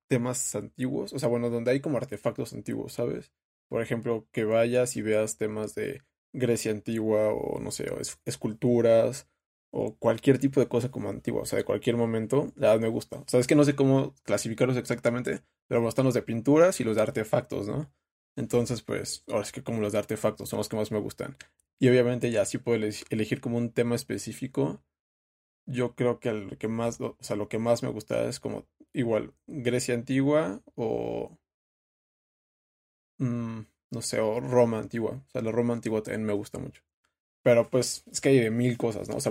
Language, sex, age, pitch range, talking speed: Spanish, male, 20-39, 105-125 Hz, 200 wpm